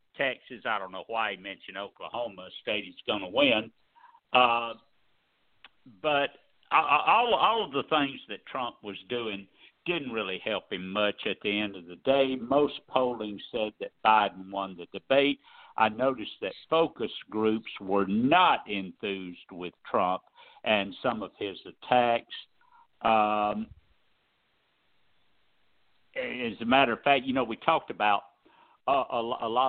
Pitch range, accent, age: 100-135 Hz, American, 60-79